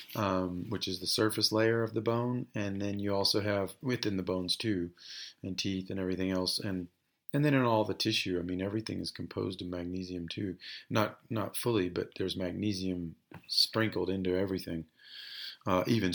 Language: English